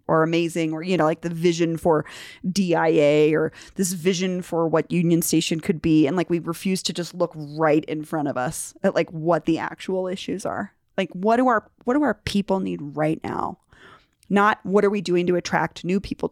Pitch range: 170-245 Hz